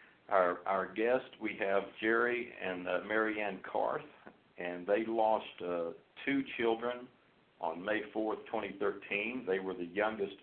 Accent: American